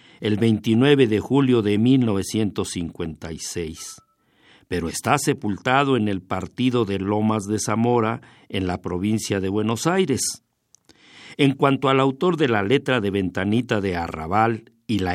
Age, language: 50-69, Spanish